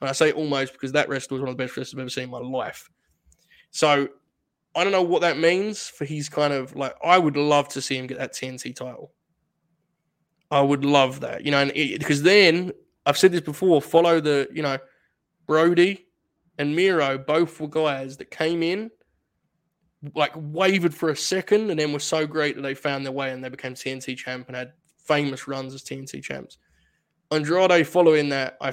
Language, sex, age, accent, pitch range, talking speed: English, male, 20-39, Australian, 135-160 Hz, 205 wpm